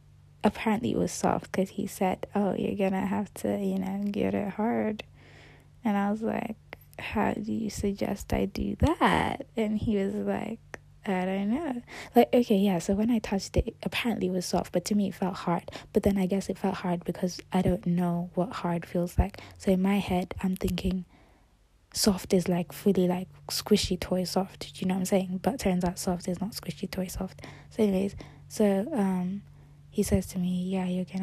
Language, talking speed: English, 210 wpm